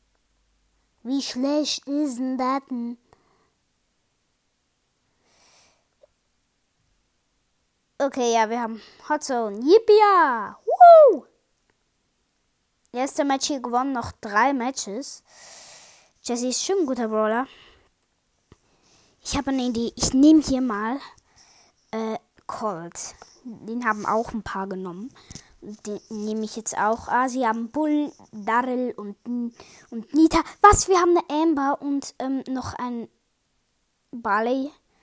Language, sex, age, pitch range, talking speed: German, female, 20-39, 225-290 Hz, 110 wpm